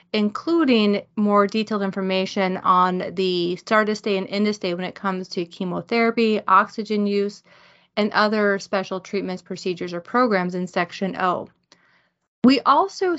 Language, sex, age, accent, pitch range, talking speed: English, female, 30-49, American, 190-230 Hz, 135 wpm